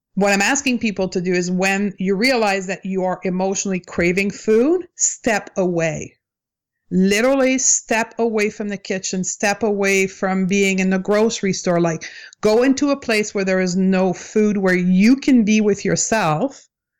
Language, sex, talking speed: English, female, 170 wpm